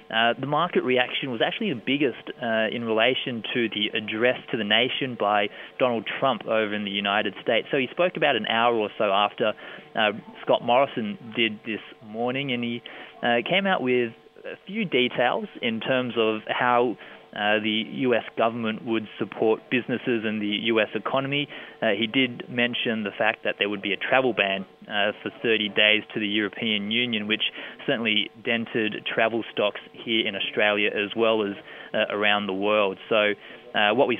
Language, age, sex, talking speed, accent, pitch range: English, 20-39, male, 180 wpm, Australian, 105-130 Hz